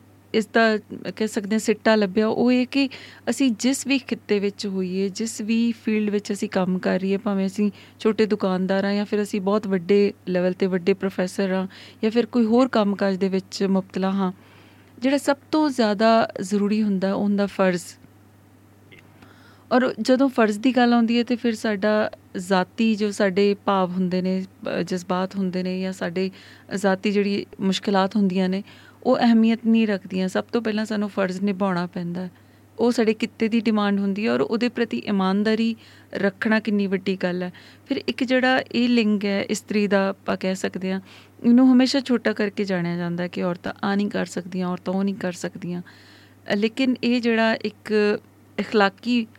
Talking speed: 175 wpm